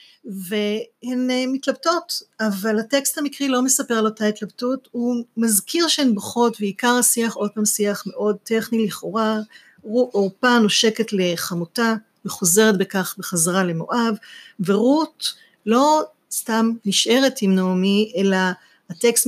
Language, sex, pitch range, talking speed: Hebrew, female, 195-235 Hz, 120 wpm